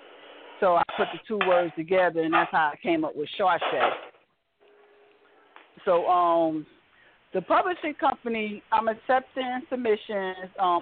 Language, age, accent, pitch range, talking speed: English, 40-59, American, 185-265 Hz, 135 wpm